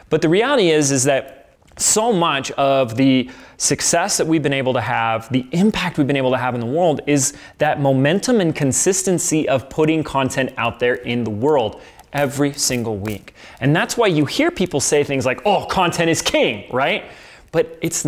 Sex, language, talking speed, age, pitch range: male, English, 195 wpm, 20-39, 120-160 Hz